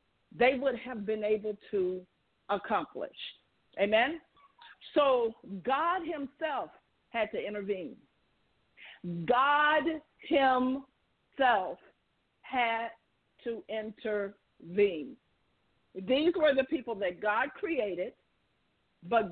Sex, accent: female, American